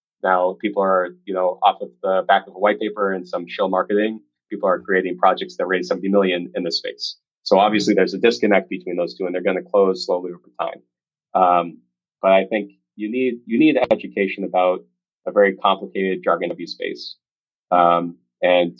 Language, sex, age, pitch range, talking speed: English, male, 30-49, 90-110 Hz, 200 wpm